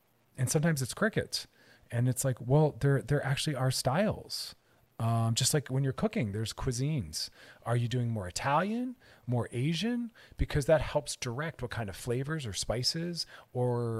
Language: English